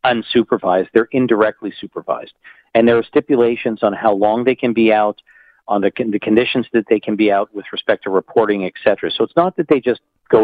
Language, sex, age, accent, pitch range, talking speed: English, male, 50-69, American, 105-135 Hz, 205 wpm